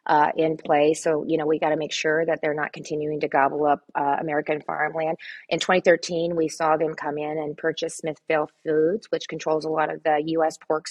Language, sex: English, female